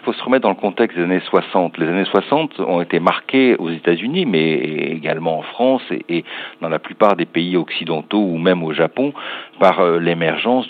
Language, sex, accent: French, male, French